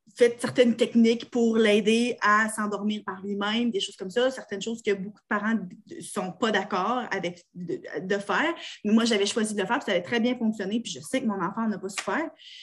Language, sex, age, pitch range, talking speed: French, female, 20-39, 215-260 Hz, 235 wpm